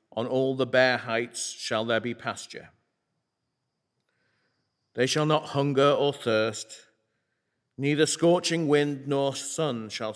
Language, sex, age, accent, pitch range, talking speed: English, male, 40-59, British, 120-145 Hz, 125 wpm